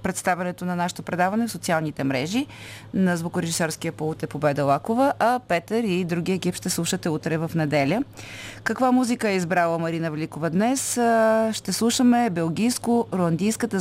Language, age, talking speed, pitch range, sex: Bulgarian, 30-49, 135 wpm, 155-195 Hz, female